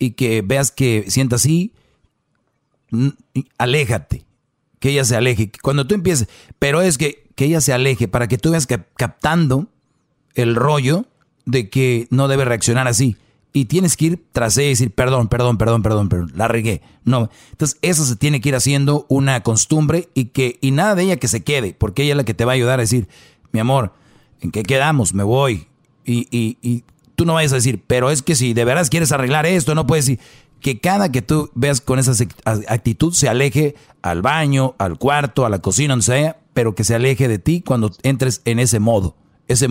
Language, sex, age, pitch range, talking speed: Spanish, male, 40-59, 120-145 Hz, 205 wpm